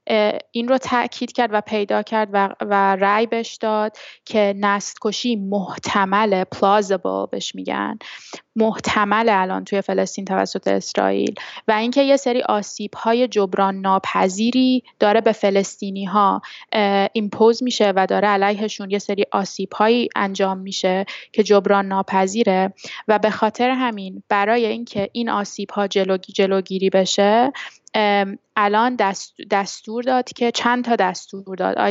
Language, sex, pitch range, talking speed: Persian, female, 195-225 Hz, 130 wpm